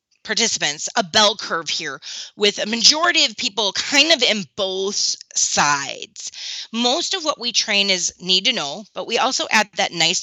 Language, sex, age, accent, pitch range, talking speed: English, female, 30-49, American, 180-250 Hz, 175 wpm